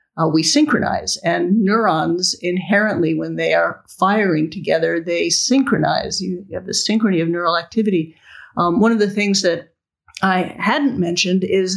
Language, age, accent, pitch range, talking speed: English, 50-69, American, 170-210 Hz, 160 wpm